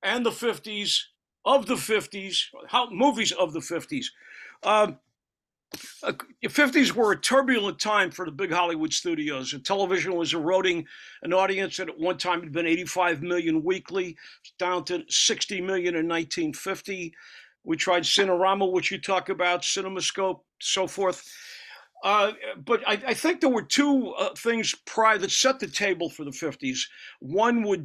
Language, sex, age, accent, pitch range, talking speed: English, male, 50-69, American, 165-210 Hz, 155 wpm